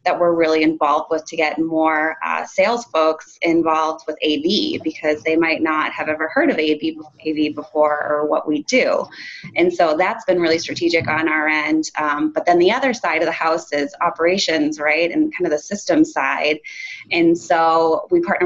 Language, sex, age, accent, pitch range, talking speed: English, female, 20-39, American, 160-215 Hz, 200 wpm